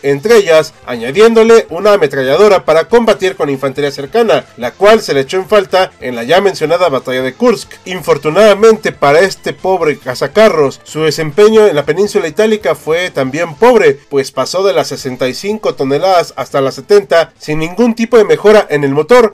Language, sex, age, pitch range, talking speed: Spanish, male, 40-59, 150-215 Hz, 170 wpm